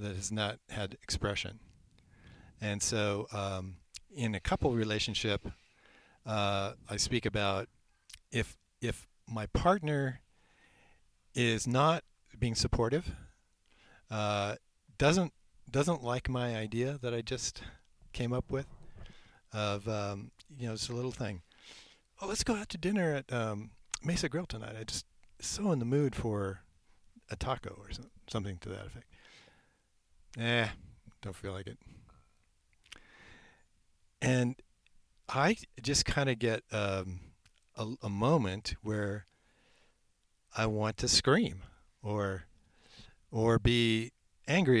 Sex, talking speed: male, 125 wpm